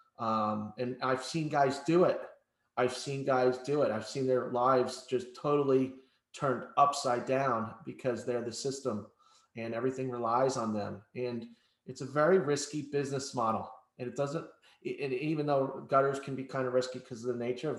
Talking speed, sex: 185 wpm, male